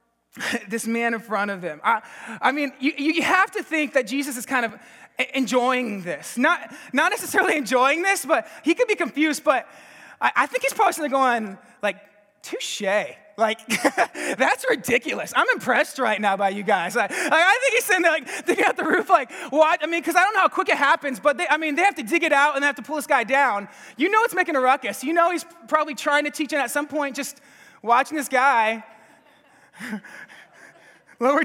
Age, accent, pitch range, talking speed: 20-39, American, 235-330 Hz, 220 wpm